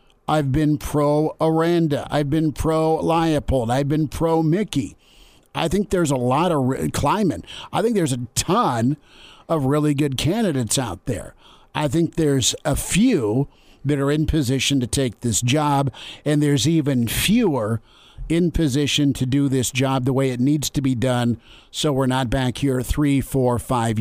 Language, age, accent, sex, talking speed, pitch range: English, 50-69, American, male, 160 wpm, 125-150 Hz